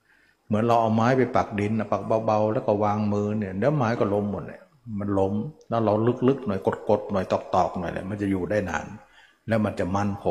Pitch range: 100-120 Hz